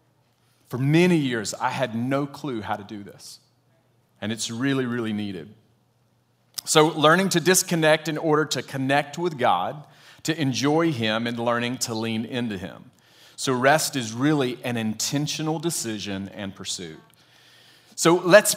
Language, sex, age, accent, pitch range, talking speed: English, male, 30-49, American, 115-150 Hz, 150 wpm